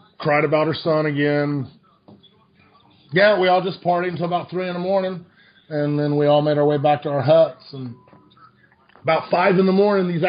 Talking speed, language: 200 wpm, English